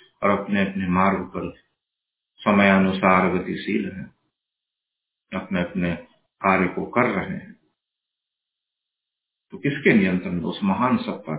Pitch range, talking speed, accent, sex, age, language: 100-135 Hz, 110 wpm, native, male, 50-69, Hindi